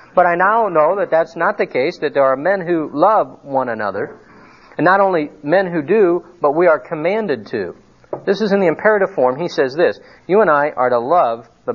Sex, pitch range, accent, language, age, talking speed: male, 160-220 Hz, American, English, 50-69, 225 wpm